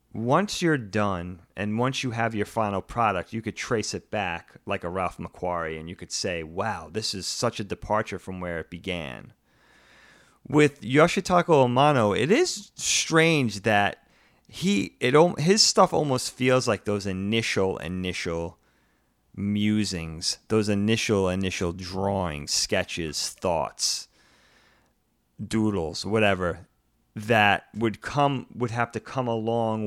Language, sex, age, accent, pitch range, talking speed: English, male, 30-49, American, 95-130 Hz, 135 wpm